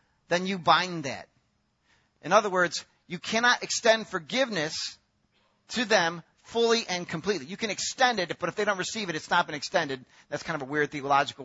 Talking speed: 190 wpm